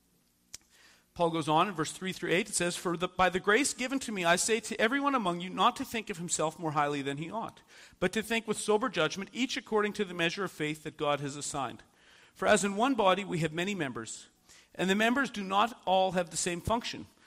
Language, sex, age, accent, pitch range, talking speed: English, male, 40-59, American, 165-220 Hz, 240 wpm